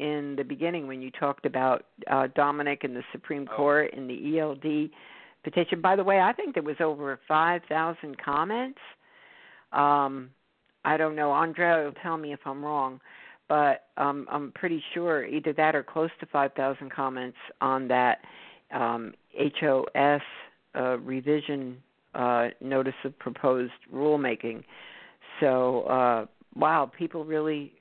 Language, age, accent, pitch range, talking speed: English, 50-69, American, 135-160 Hz, 140 wpm